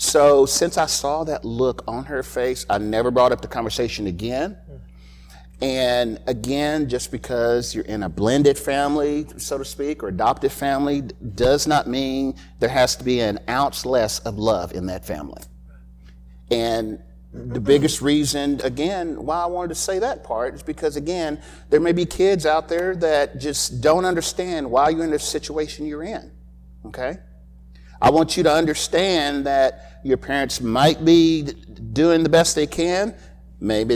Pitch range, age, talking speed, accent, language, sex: 105-155 Hz, 50-69, 170 wpm, American, English, male